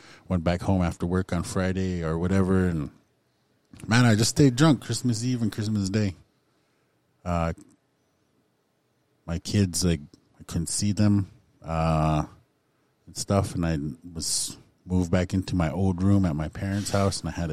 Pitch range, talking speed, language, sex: 85-110 Hz, 160 wpm, English, male